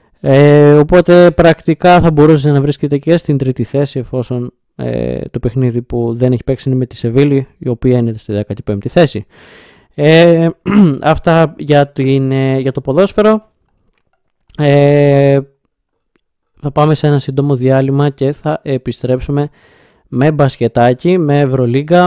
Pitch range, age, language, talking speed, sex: 125-155 Hz, 20-39, Greek, 120 wpm, male